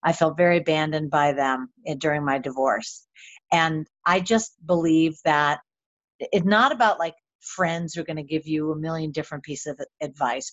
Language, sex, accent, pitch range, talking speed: English, female, American, 155-190 Hz, 175 wpm